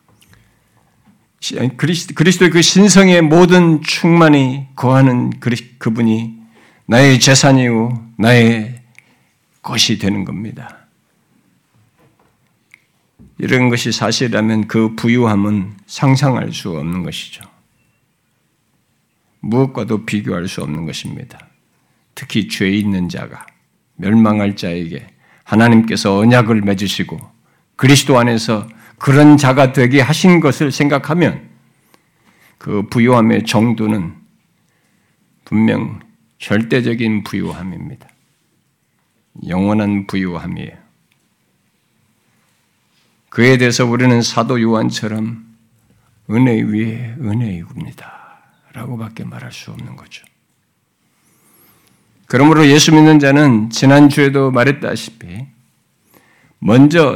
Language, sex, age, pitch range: Korean, male, 50-69, 110-140 Hz